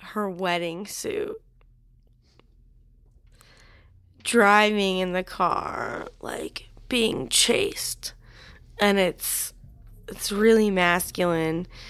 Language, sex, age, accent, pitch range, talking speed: English, female, 20-39, American, 175-215 Hz, 75 wpm